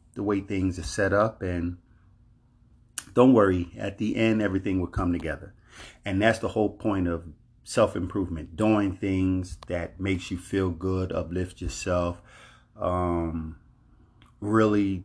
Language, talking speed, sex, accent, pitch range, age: English, 135 wpm, male, American, 85-110 Hz, 30-49